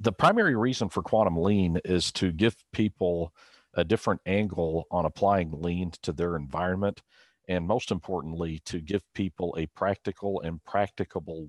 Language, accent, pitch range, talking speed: English, American, 80-100 Hz, 150 wpm